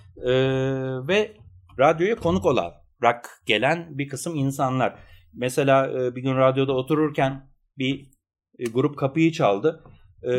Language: Turkish